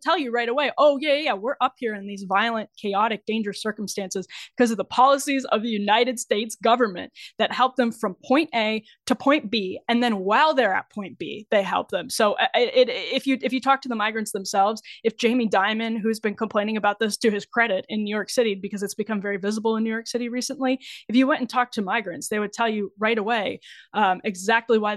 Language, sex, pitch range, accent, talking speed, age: English, female, 200-235 Hz, American, 230 wpm, 10-29